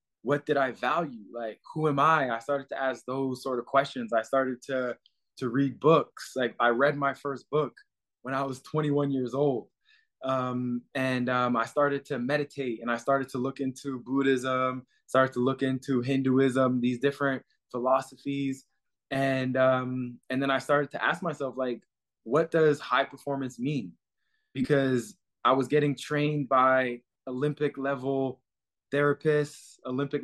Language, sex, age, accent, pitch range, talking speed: English, male, 20-39, American, 130-145 Hz, 165 wpm